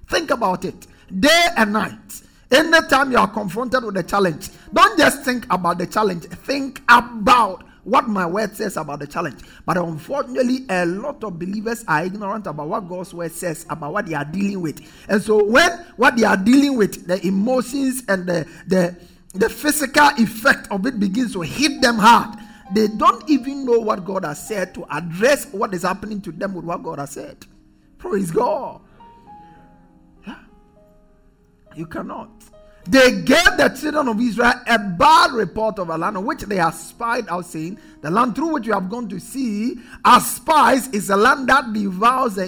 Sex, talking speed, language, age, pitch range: male, 180 wpm, English, 50-69, 175-245 Hz